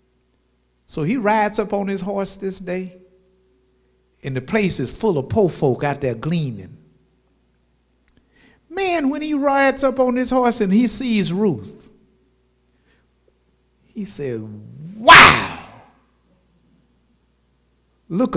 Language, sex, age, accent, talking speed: English, male, 50-69, American, 120 wpm